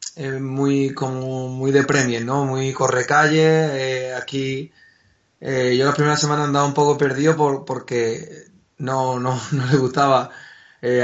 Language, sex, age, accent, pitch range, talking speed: Spanish, male, 30-49, Spanish, 130-145 Hz, 150 wpm